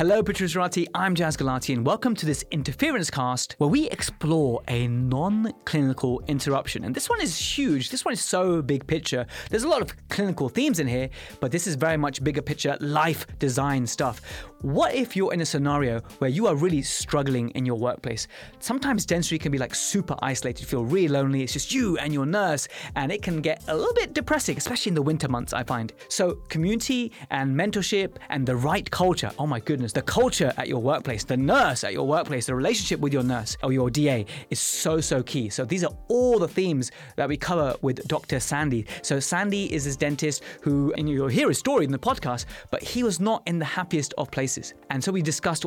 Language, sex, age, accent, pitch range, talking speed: English, male, 20-39, British, 135-185 Hz, 215 wpm